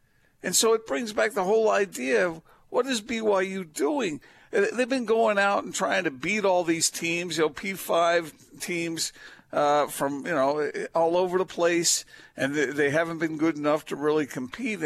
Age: 60-79